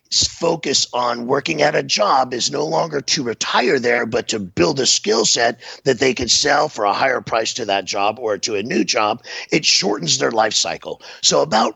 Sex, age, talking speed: male, 50-69, 210 wpm